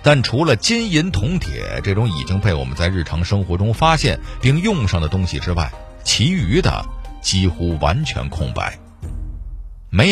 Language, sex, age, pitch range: Chinese, male, 50-69, 80-115 Hz